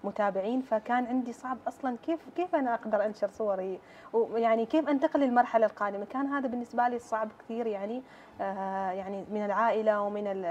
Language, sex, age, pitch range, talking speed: Arabic, female, 20-39, 200-240 Hz, 160 wpm